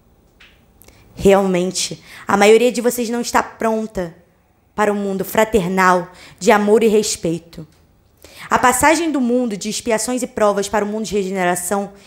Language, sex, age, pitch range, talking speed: Portuguese, female, 20-39, 195-245 Hz, 150 wpm